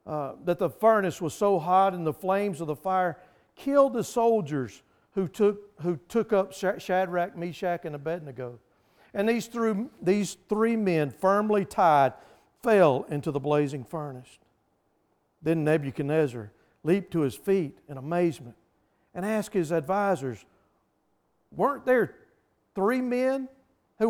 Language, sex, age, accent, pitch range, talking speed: English, male, 50-69, American, 165-235 Hz, 135 wpm